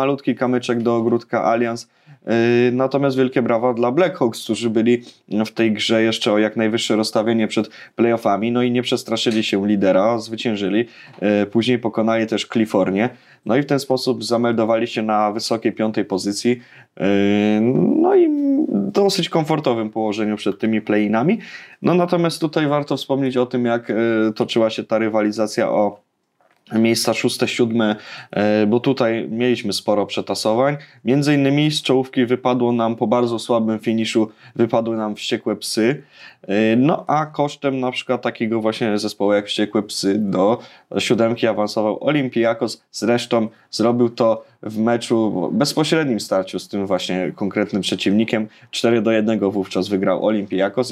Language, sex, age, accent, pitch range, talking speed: Polish, male, 20-39, native, 110-125 Hz, 145 wpm